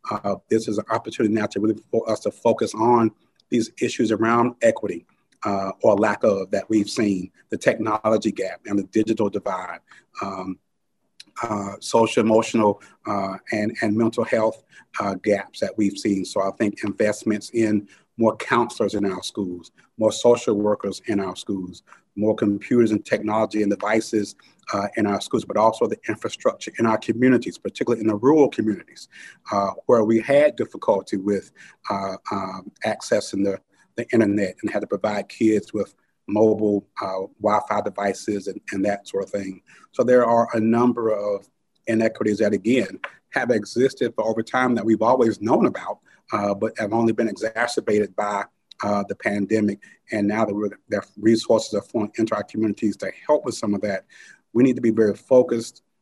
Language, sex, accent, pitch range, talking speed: English, male, American, 100-115 Hz, 170 wpm